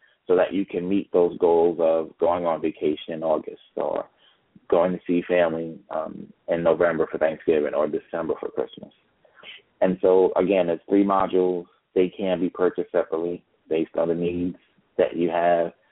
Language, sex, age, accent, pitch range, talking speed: English, male, 30-49, American, 85-95 Hz, 170 wpm